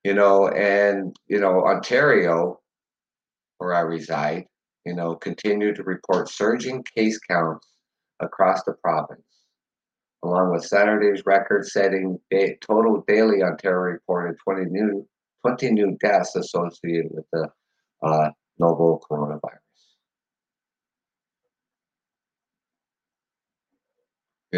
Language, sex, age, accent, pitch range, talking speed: English, male, 50-69, American, 80-100 Hz, 95 wpm